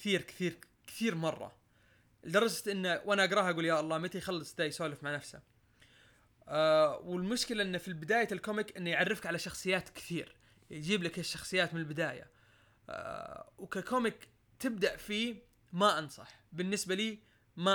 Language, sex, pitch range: Arabic, male, 160-200 Hz